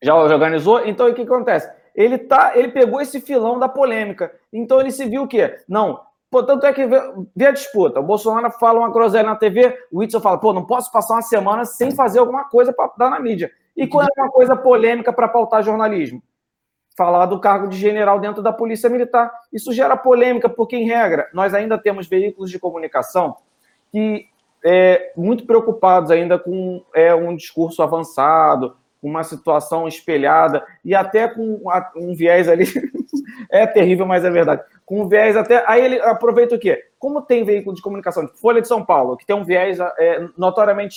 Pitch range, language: 185-255 Hz, Portuguese